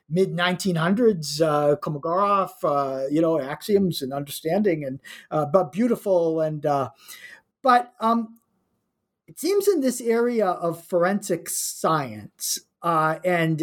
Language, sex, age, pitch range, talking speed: English, male, 50-69, 160-200 Hz, 120 wpm